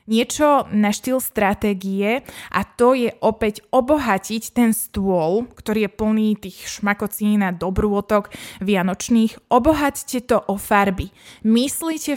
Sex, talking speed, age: female, 120 wpm, 20-39